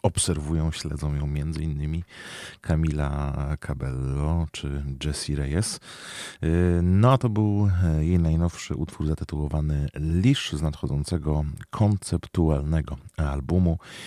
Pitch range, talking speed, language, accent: 70-85 Hz, 95 wpm, Polish, native